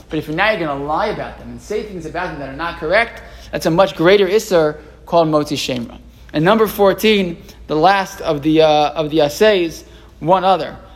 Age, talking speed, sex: 20-39, 215 wpm, male